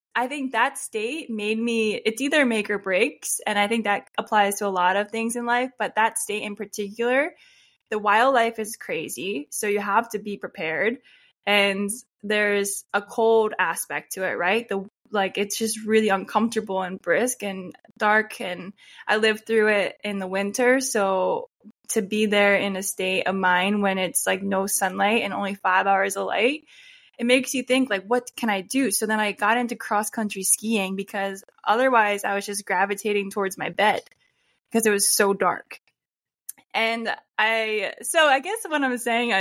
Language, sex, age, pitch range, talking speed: English, female, 10-29, 200-235 Hz, 185 wpm